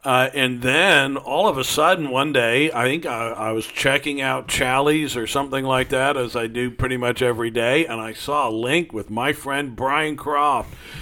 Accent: American